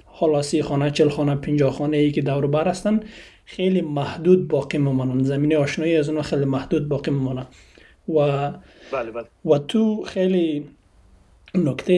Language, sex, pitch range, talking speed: Persian, male, 140-170 Hz, 135 wpm